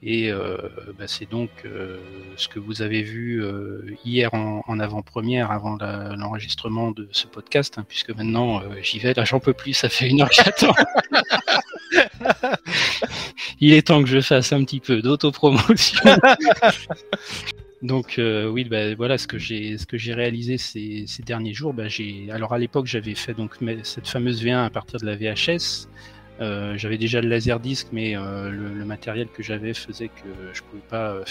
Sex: male